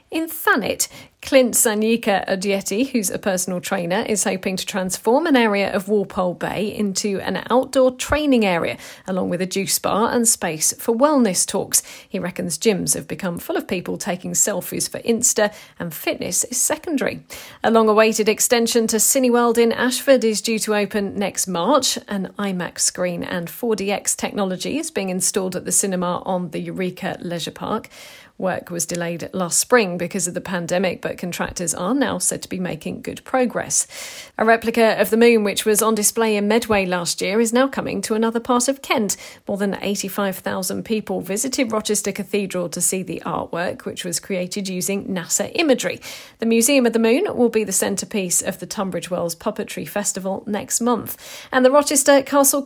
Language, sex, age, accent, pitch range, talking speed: English, female, 40-59, British, 185-235 Hz, 180 wpm